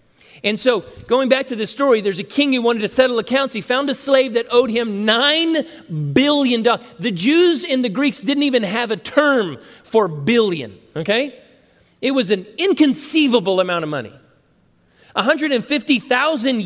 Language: English